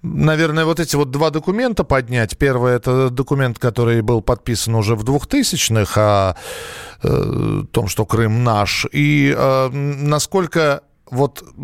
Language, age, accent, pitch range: Russian, 40-59, native, 115-150 Hz